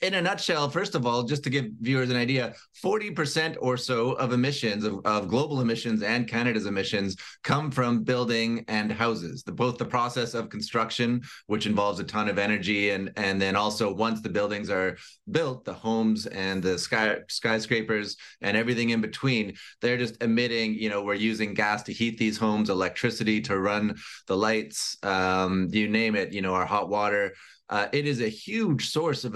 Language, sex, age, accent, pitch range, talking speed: English, male, 30-49, American, 105-125 Hz, 185 wpm